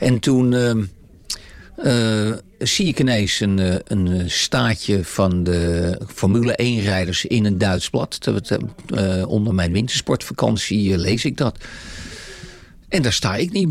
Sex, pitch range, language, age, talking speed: male, 95-120 Hz, Dutch, 50-69, 135 wpm